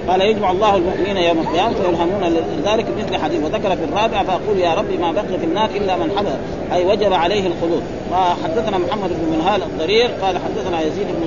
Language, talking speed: Arabic, 185 wpm